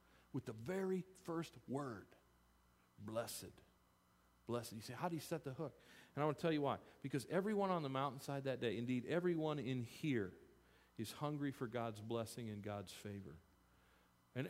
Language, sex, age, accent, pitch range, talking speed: English, male, 40-59, American, 120-160 Hz, 175 wpm